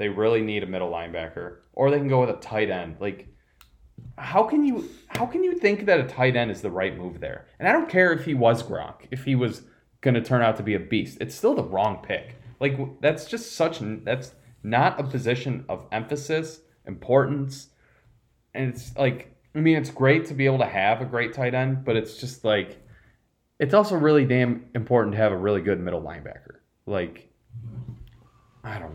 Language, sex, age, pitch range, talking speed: English, male, 20-39, 95-135 Hz, 205 wpm